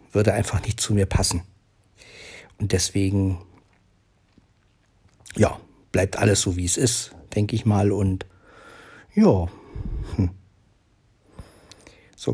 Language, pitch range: German, 100-115 Hz